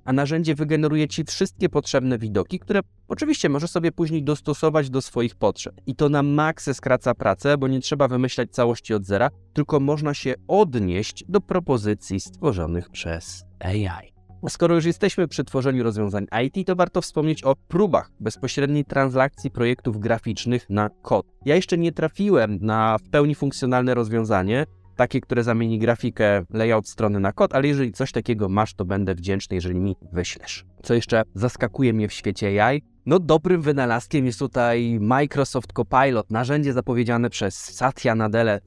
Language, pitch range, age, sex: Polish, 105-140 Hz, 20-39, male